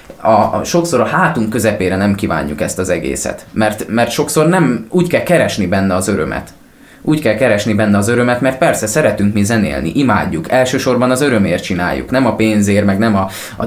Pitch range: 105-135 Hz